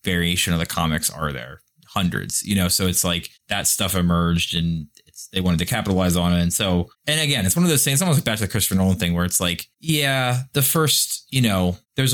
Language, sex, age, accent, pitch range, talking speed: English, male, 20-39, American, 90-120 Hz, 230 wpm